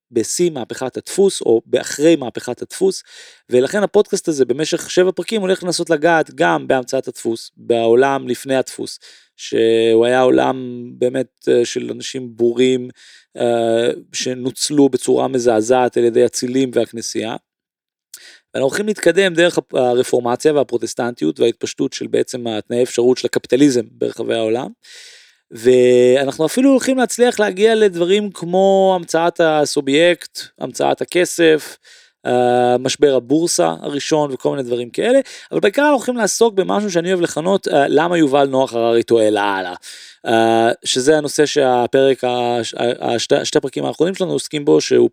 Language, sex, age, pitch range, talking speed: Hebrew, male, 30-49, 120-170 Hz, 125 wpm